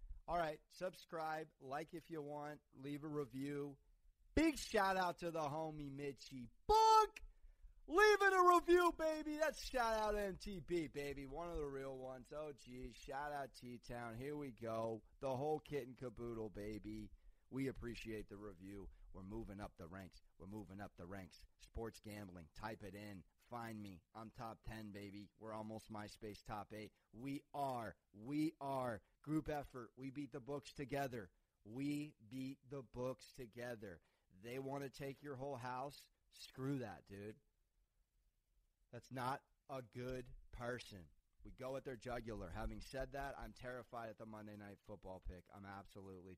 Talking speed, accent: 160 wpm, American